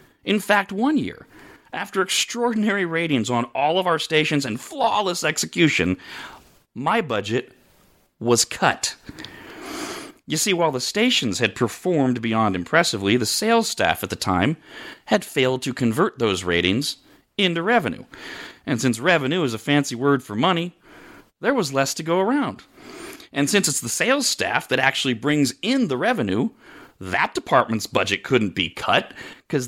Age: 40-59